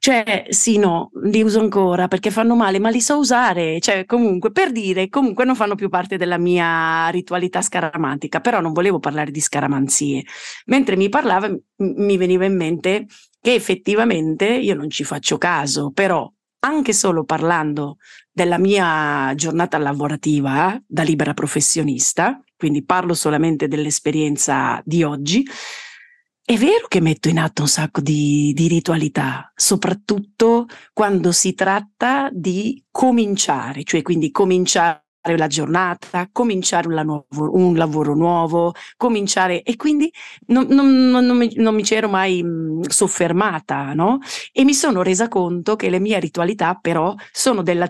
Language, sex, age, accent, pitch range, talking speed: Italian, female, 40-59, native, 160-215 Hz, 150 wpm